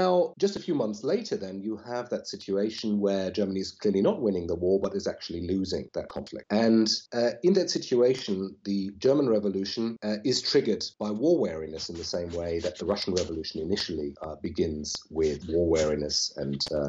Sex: male